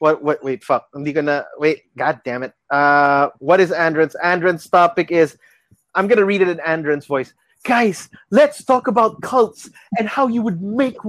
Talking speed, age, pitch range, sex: 185 wpm, 20-39, 155-220 Hz, male